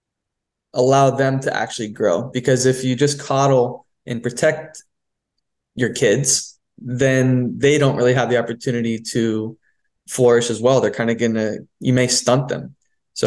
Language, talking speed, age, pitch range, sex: English, 160 wpm, 20-39, 120-140 Hz, male